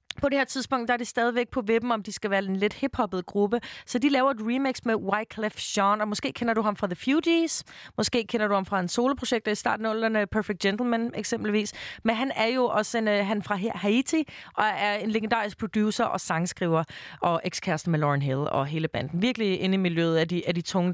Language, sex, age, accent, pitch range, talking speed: Danish, female, 30-49, native, 165-225 Hz, 240 wpm